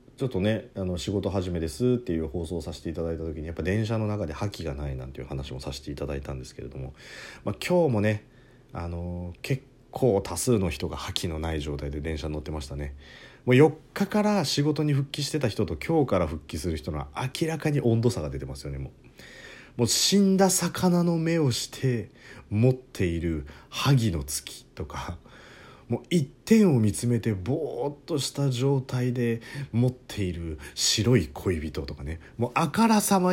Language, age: Japanese, 40-59